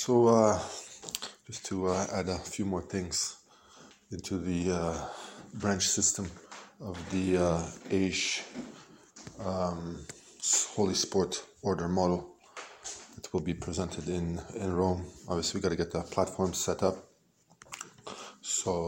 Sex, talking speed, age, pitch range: male, 130 wpm, 20-39, 90-95 Hz